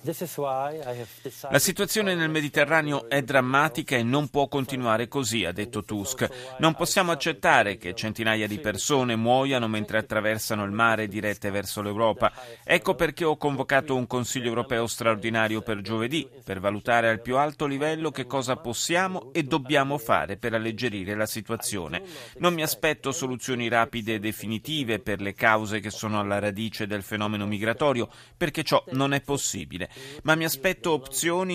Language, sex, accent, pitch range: Italian, male, native, 110-145 Hz